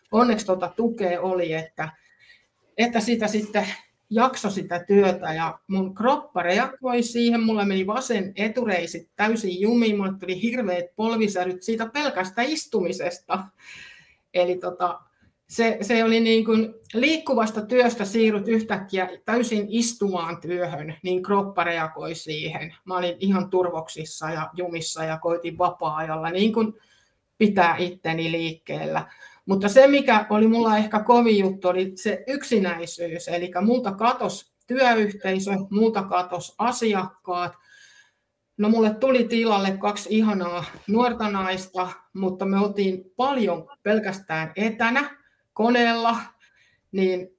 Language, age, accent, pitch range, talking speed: Finnish, 60-79, native, 180-225 Hz, 120 wpm